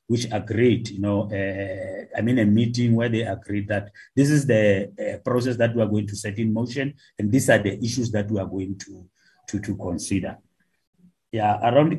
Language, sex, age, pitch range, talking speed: English, male, 30-49, 100-125 Hz, 205 wpm